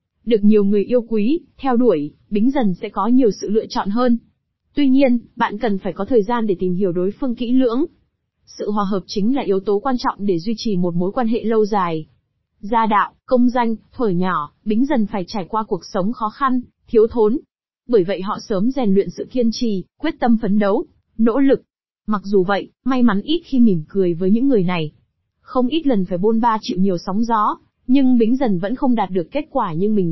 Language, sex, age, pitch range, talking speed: Vietnamese, female, 20-39, 195-250 Hz, 230 wpm